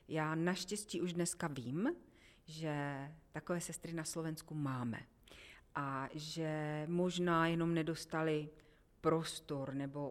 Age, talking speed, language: 40-59, 105 wpm, Slovak